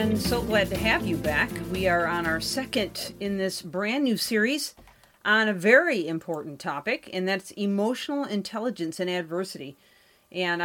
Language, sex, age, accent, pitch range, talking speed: English, female, 40-59, American, 170-200 Hz, 165 wpm